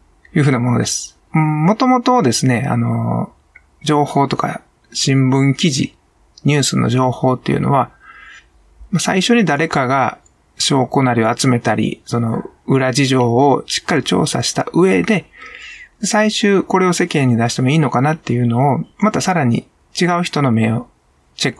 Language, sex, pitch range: Japanese, male, 120-165 Hz